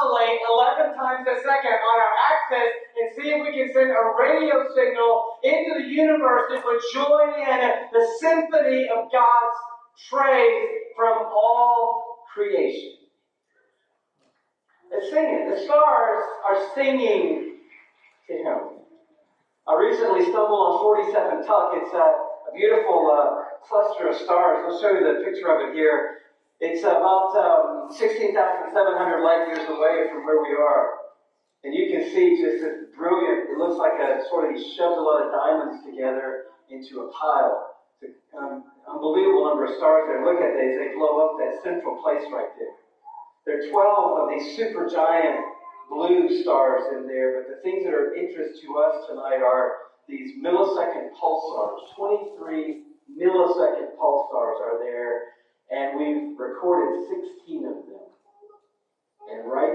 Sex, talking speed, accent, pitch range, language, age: male, 150 wpm, American, 195-330 Hz, English, 40-59